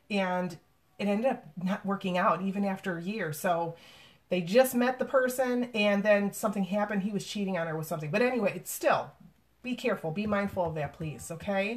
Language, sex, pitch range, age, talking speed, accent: English, female, 200-255 Hz, 30-49, 205 wpm, American